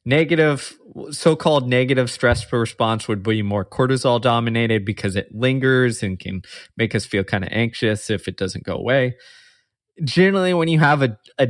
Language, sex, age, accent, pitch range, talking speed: English, male, 20-39, American, 110-140 Hz, 160 wpm